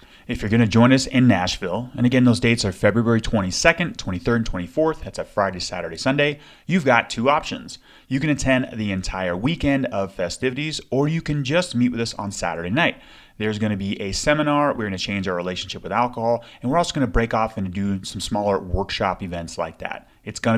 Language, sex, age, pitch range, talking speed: English, male, 30-49, 100-145 Hz, 220 wpm